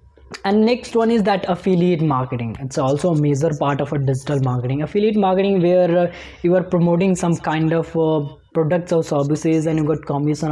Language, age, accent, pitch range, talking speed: English, 20-39, Indian, 150-195 Hz, 195 wpm